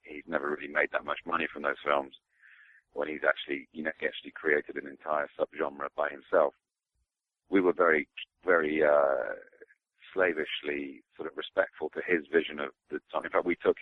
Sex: male